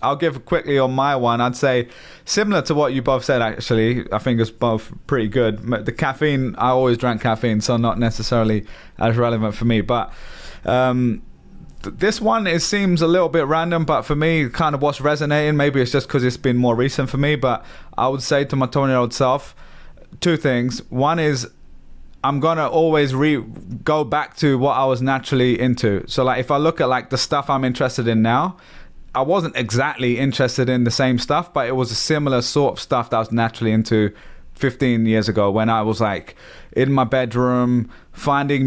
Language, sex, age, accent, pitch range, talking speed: English, male, 20-39, British, 120-140 Hz, 205 wpm